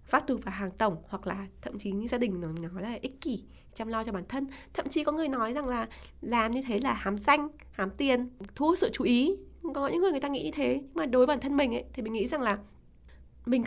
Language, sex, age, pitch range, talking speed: Vietnamese, female, 20-39, 185-255 Hz, 275 wpm